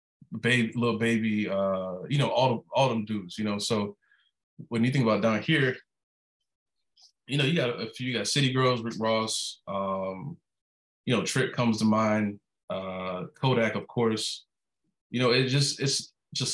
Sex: male